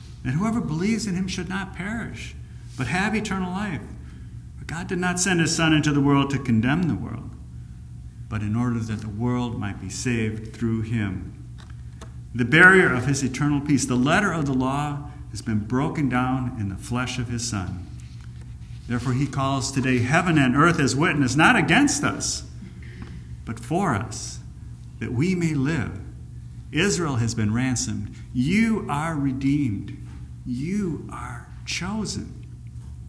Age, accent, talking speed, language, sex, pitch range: 50-69, American, 160 wpm, English, male, 105-145 Hz